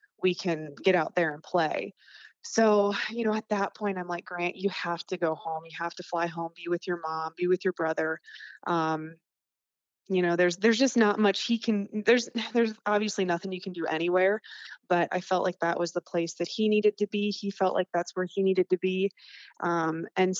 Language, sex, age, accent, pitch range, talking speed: English, female, 20-39, American, 175-210 Hz, 225 wpm